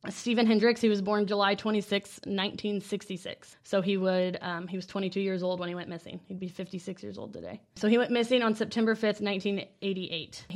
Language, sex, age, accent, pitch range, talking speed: English, female, 20-39, American, 185-215 Hz, 200 wpm